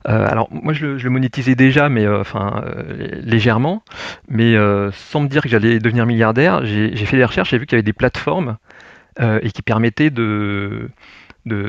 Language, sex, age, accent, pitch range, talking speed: French, male, 30-49, French, 105-130 Hz, 205 wpm